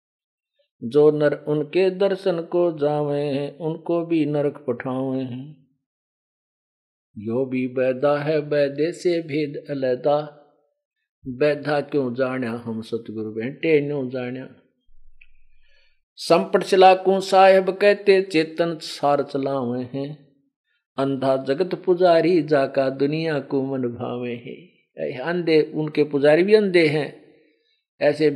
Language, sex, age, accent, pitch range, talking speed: Hindi, male, 50-69, native, 135-180 Hz, 110 wpm